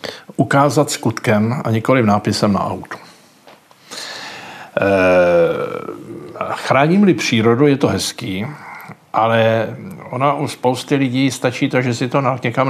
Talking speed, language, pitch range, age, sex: 120 wpm, Slovak, 115-145 Hz, 50-69, male